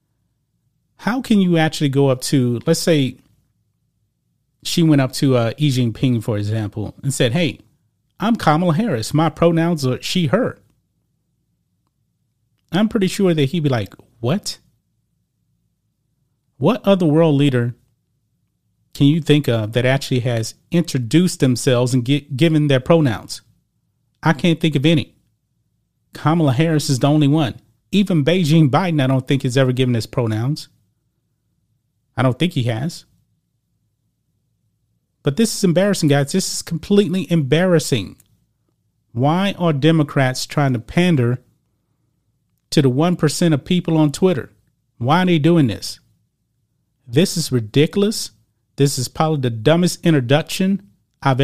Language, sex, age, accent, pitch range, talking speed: English, male, 30-49, American, 125-165 Hz, 140 wpm